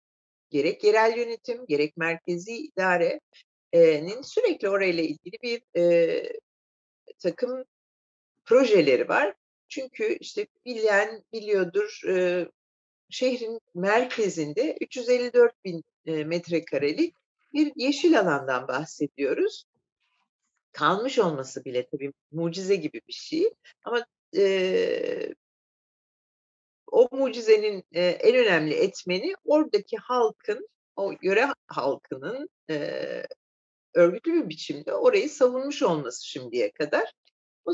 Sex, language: female, Turkish